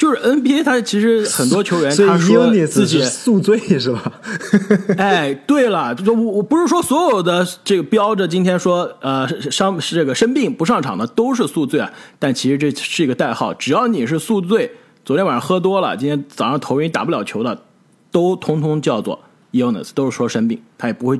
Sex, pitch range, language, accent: male, 150-230 Hz, Chinese, native